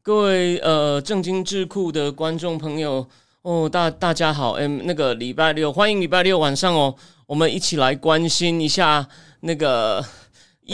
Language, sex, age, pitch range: Chinese, male, 30-49, 165-230 Hz